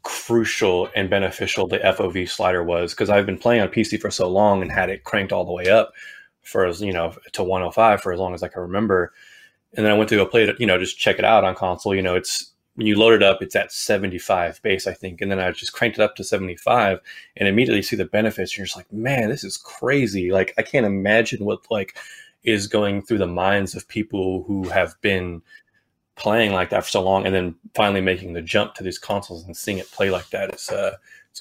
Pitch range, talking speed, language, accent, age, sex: 90-110 Hz, 245 wpm, English, American, 20-39, male